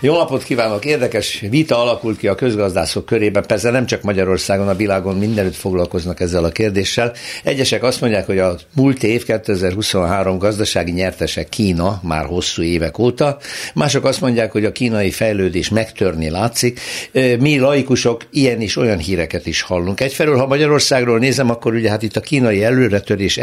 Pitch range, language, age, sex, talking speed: 90-120 Hz, Hungarian, 60-79, male, 165 wpm